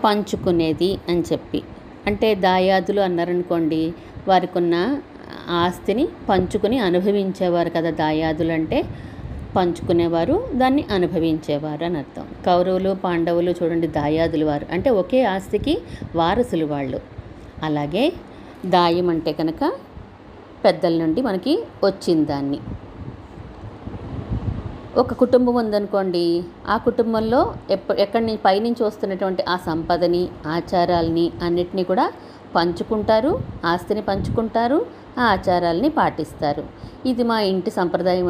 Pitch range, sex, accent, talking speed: 160-205 Hz, female, native, 95 wpm